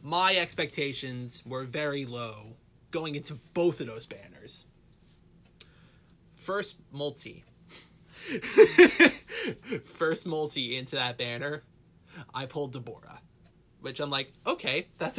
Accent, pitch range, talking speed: American, 120-150 Hz, 105 wpm